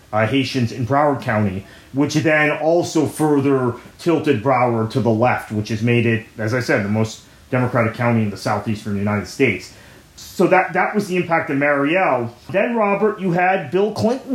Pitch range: 125-170 Hz